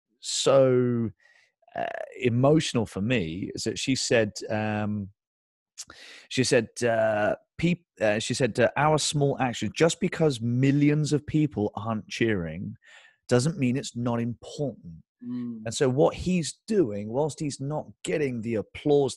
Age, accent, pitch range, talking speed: 30-49, British, 105-125 Hz, 140 wpm